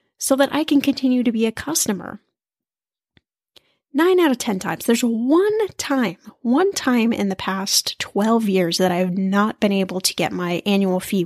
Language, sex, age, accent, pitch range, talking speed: English, female, 10-29, American, 195-280 Hz, 180 wpm